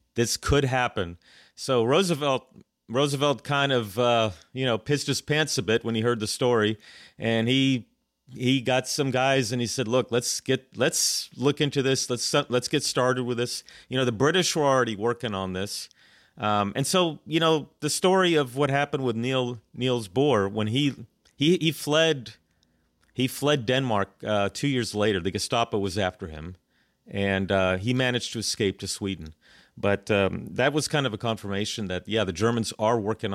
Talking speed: 190 wpm